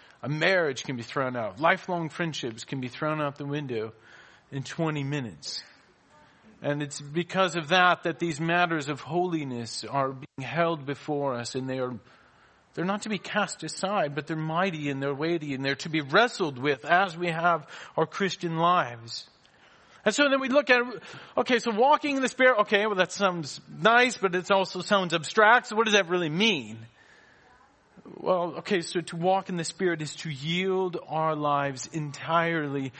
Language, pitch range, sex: English, 140-205 Hz, male